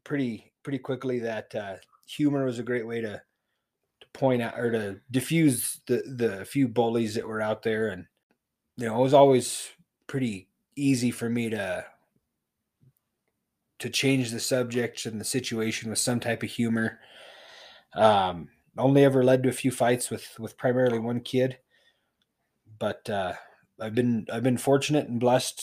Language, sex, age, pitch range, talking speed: English, male, 20-39, 110-130 Hz, 165 wpm